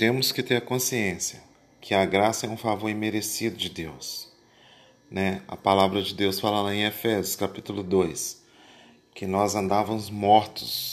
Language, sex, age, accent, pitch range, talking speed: Portuguese, male, 40-59, Brazilian, 95-120 Hz, 160 wpm